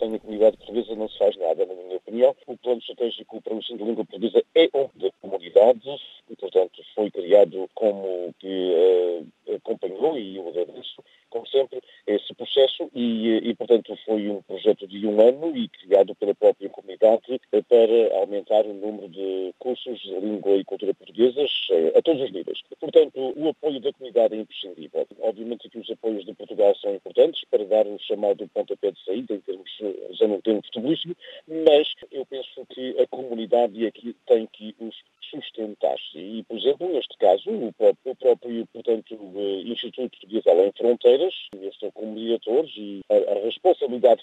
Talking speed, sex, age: 170 wpm, male, 50-69